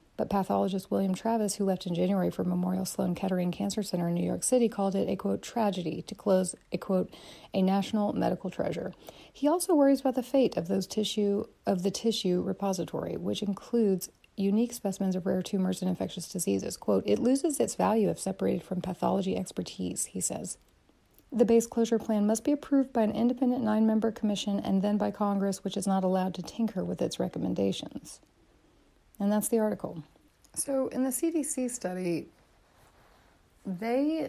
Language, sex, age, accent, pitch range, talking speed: English, female, 40-59, American, 180-230 Hz, 175 wpm